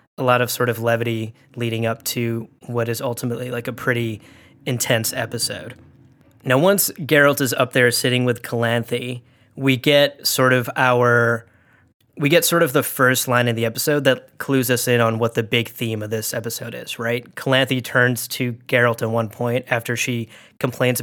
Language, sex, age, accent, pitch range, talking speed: English, male, 20-39, American, 120-140 Hz, 185 wpm